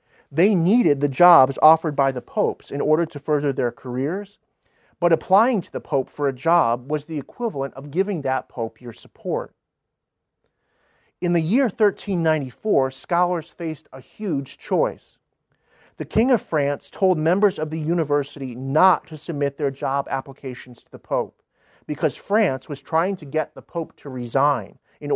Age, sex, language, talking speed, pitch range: 40-59, male, English, 165 wpm, 135-180 Hz